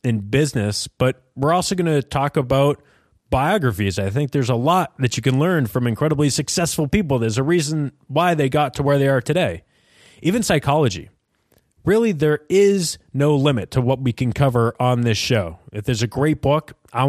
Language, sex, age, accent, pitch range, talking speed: English, male, 20-39, American, 120-155 Hz, 195 wpm